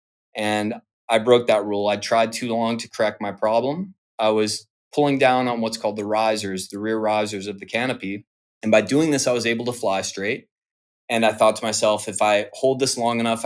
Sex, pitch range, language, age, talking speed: male, 100-115 Hz, English, 20-39, 220 wpm